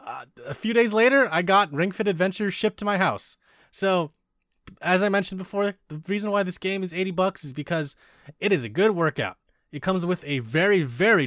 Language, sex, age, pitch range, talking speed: English, male, 20-39, 120-160 Hz, 215 wpm